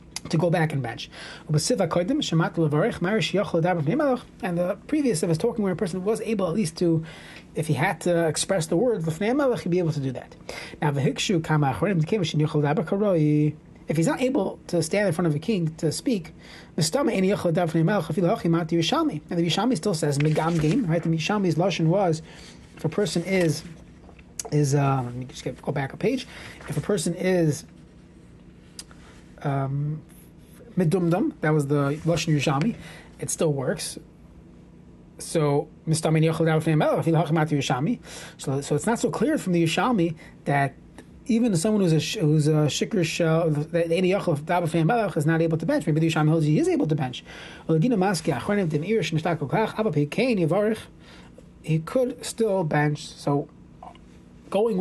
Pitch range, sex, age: 155-195 Hz, male, 30-49